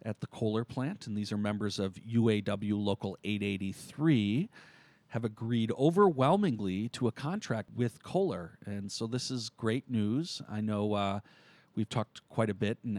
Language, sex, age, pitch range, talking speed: English, male, 40-59, 105-130 Hz, 160 wpm